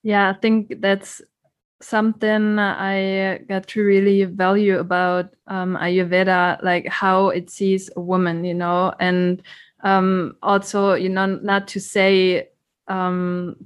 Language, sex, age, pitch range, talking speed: German, female, 20-39, 180-205 Hz, 130 wpm